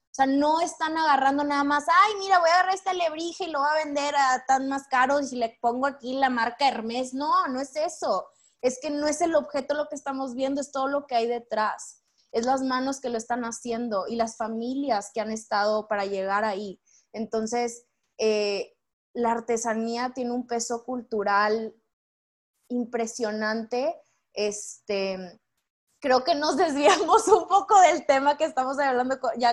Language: Spanish